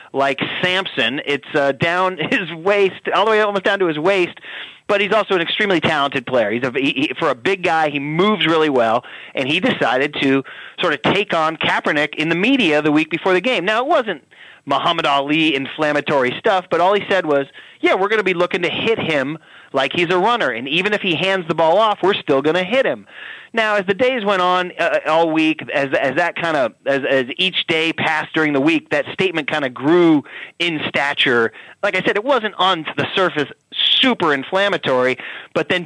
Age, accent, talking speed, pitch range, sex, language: 30-49, American, 220 wpm, 145-195 Hz, male, English